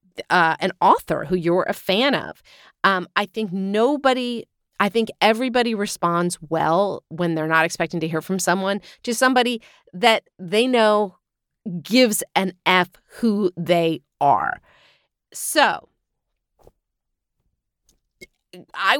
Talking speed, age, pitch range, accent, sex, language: 120 wpm, 40-59, 175-225 Hz, American, female, English